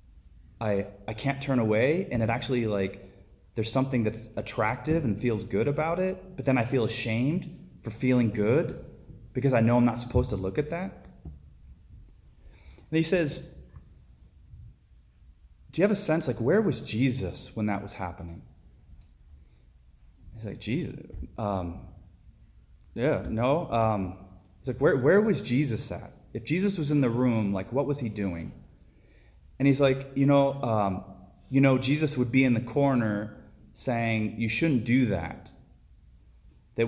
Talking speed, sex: 160 wpm, male